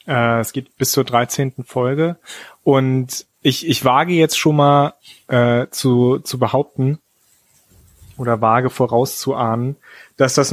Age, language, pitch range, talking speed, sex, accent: 30-49, German, 120-145 Hz, 125 wpm, male, German